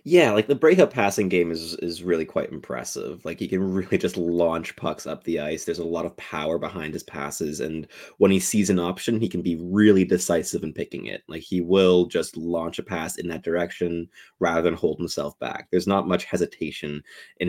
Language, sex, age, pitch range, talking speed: English, male, 20-39, 85-100 Hz, 215 wpm